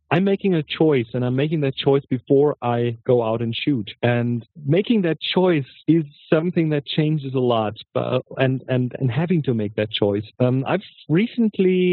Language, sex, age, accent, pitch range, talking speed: English, male, 40-59, German, 120-150 Hz, 185 wpm